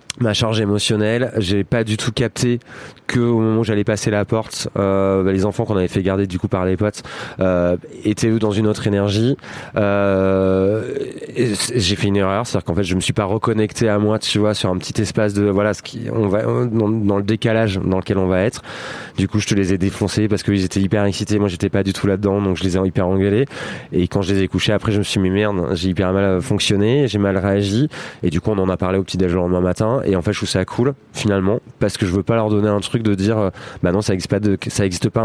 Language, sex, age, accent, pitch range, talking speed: French, male, 20-39, French, 95-110 Hz, 275 wpm